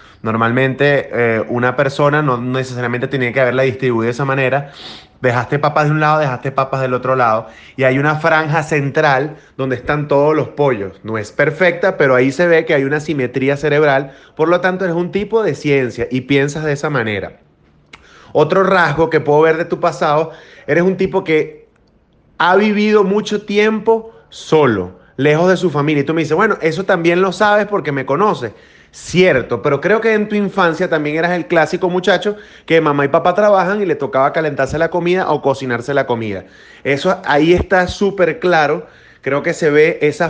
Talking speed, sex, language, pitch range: 190 wpm, male, Spanish, 140-185 Hz